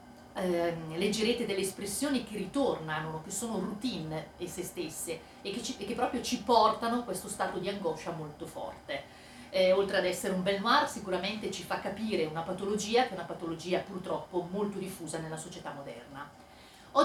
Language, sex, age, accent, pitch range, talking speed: Italian, female, 40-59, native, 170-220 Hz, 175 wpm